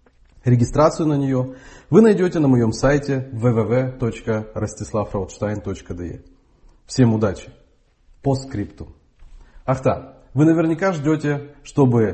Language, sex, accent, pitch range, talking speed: Russian, male, native, 110-145 Hz, 90 wpm